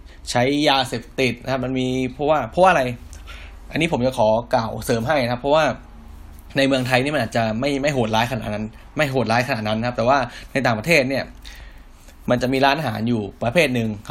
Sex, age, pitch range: male, 20-39, 105-130 Hz